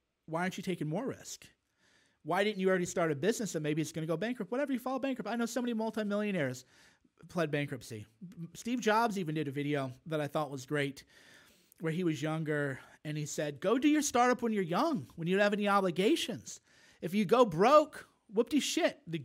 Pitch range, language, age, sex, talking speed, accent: 145-200 Hz, English, 40-59, male, 210 wpm, American